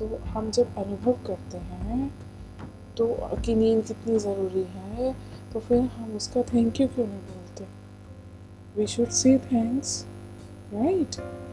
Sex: female